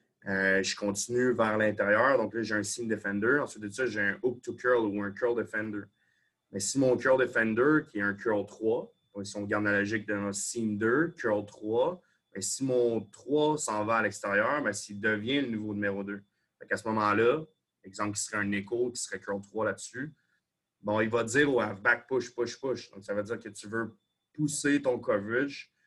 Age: 30-49